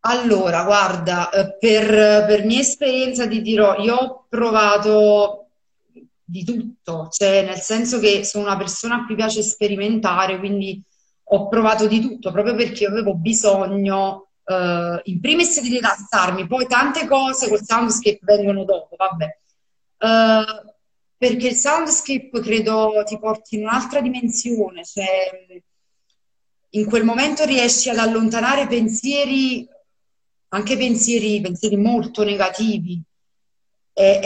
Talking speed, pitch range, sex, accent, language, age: 125 wpm, 195-235 Hz, female, native, Italian, 30-49